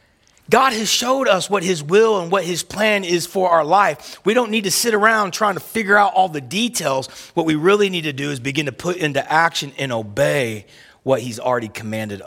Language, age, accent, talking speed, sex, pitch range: English, 30-49, American, 225 wpm, male, 130-165 Hz